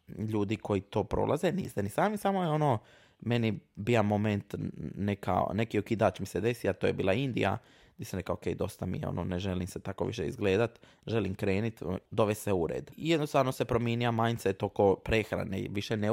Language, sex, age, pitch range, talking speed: Croatian, male, 20-39, 100-120 Hz, 185 wpm